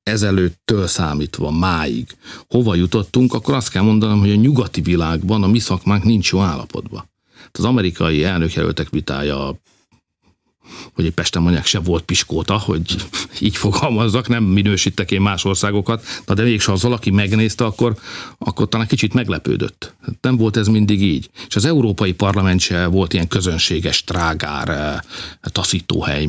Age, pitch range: 50-69, 90-110 Hz